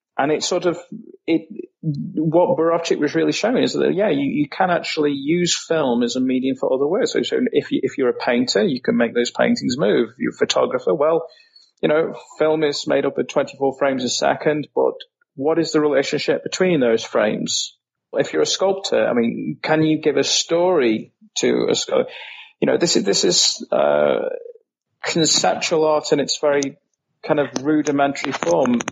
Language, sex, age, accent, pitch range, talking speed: English, male, 30-49, British, 130-195 Hz, 190 wpm